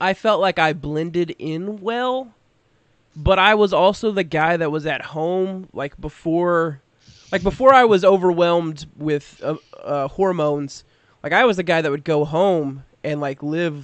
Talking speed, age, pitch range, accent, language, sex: 175 wpm, 20-39, 150-195 Hz, American, English, male